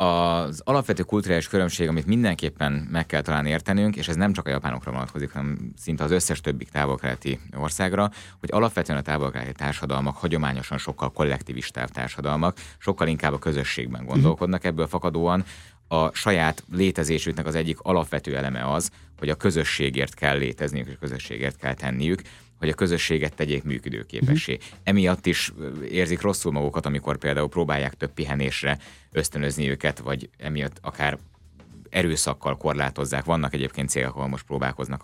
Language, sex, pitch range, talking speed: Hungarian, male, 70-85 Hz, 145 wpm